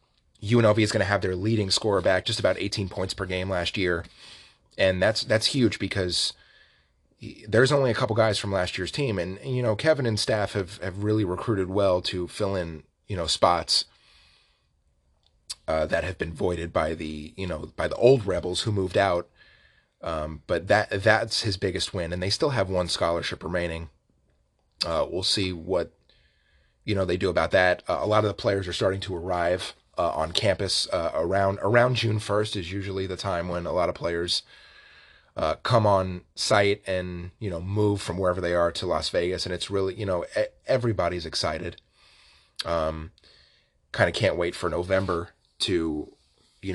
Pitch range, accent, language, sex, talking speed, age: 85-100 Hz, American, English, male, 190 wpm, 30-49